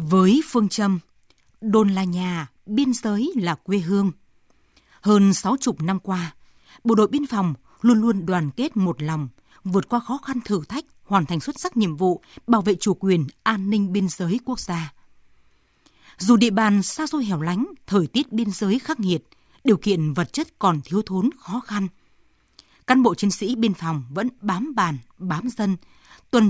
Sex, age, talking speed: female, 20-39, 185 wpm